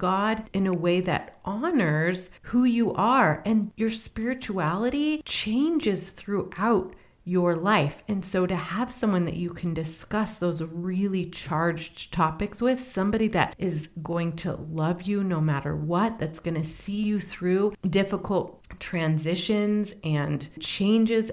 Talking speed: 140 wpm